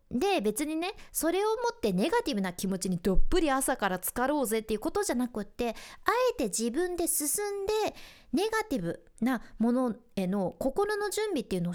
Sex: female